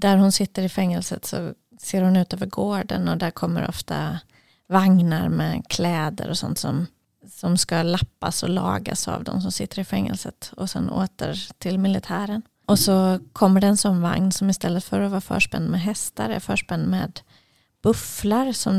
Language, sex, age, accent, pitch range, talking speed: Swedish, female, 30-49, native, 180-205 Hz, 180 wpm